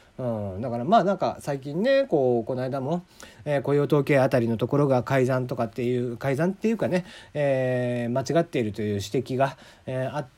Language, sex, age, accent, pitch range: Japanese, male, 40-59, native, 125-205 Hz